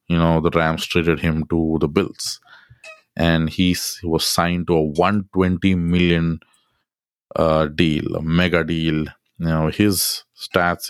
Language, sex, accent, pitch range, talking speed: English, male, Indian, 80-90 Hz, 145 wpm